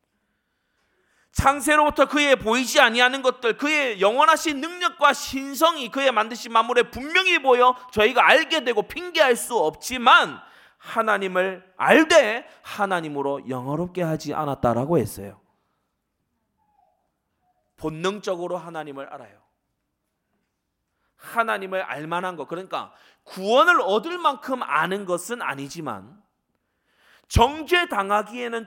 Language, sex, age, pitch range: Korean, male, 30-49, 170-255 Hz